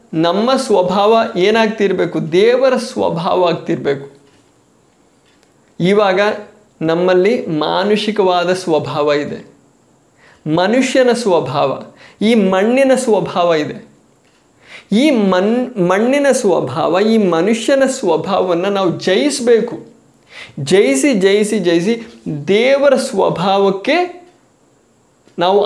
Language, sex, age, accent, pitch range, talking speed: Kannada, male, 20-39, native, 185-250 Hz, 70 wpm